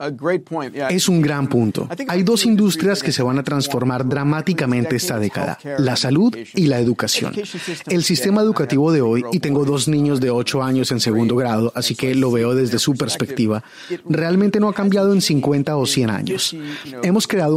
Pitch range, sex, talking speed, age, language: 130-165 Hz, male, 180 wpm, 30-49, Spanish